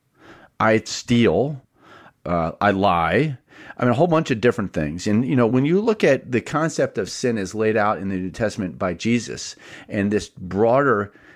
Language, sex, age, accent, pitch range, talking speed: English, male, 40-59, American, 100-135 Hz, 190 wpm